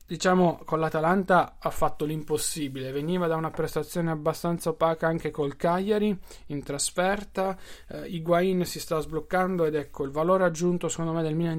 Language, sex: Italian, male